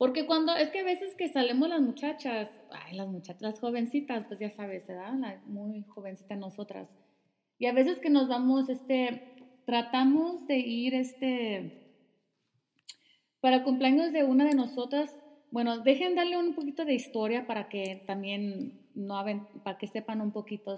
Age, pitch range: 30-49, 210-260 Hz